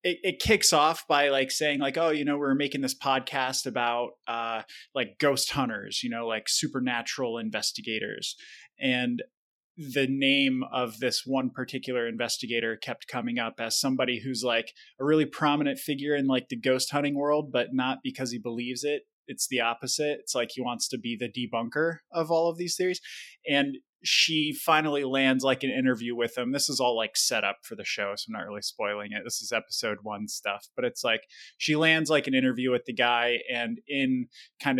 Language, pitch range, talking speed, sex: English, 115-140 Hz, 200 wpm, male